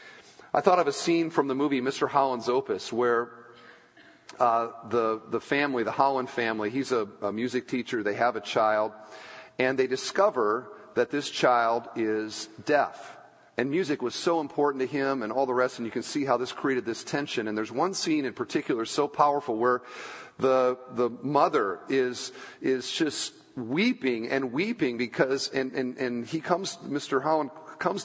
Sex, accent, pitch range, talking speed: male, American, 115-150 Hz, 185 wpm